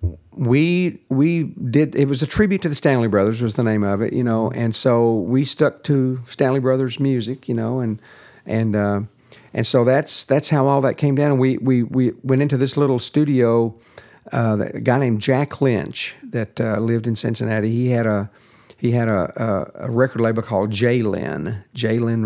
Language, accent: English, American